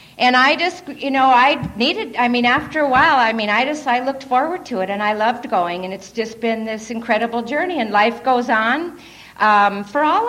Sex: female